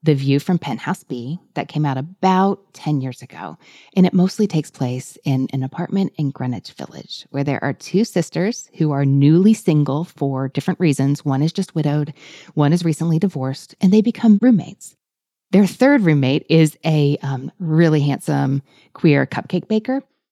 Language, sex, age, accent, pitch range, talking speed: English, female, 30-49, American, 140-185 Hz, 170 wpm